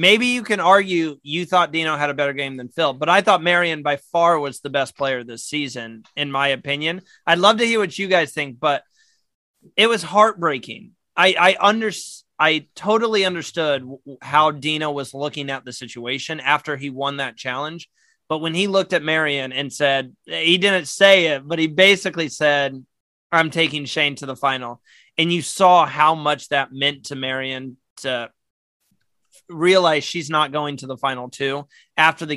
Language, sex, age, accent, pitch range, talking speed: English, male, 30-49, American, 140-175 Hz, 185 wpm